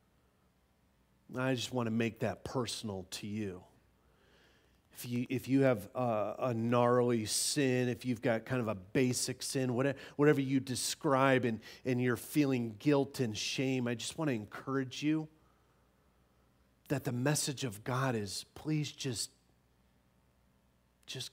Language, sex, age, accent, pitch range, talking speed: English, male, 40-59, American, 100-135 Hz, 145 wpm